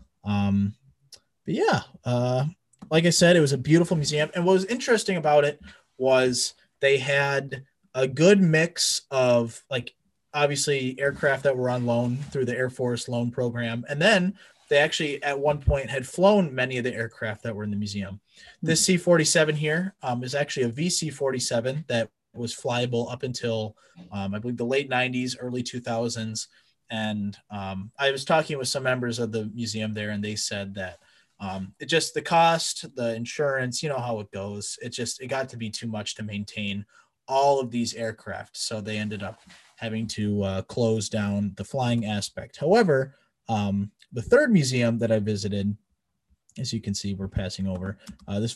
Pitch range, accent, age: 105-140 Hz, American, 20-39